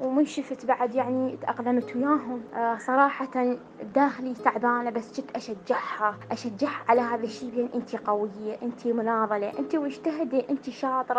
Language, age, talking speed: Arabic, 20-39, 140 wpm